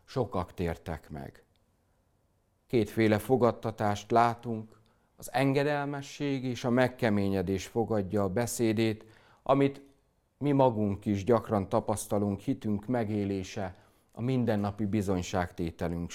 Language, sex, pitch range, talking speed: Hungarian, male, 95-120 Hz, 95 wpm